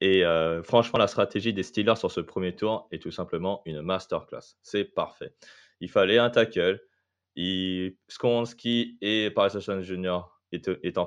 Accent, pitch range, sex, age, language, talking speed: French, 90-110 Hz, male, 20-39, French, 170 wpm